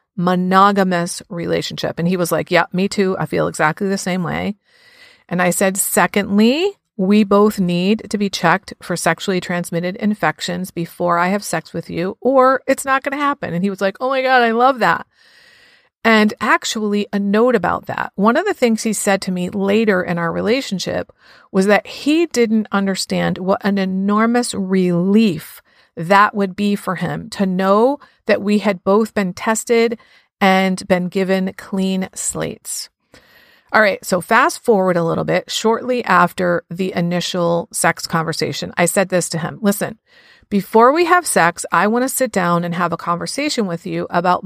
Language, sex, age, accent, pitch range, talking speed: English, female, 40-59, American, 175-225 Hz, 180 wpm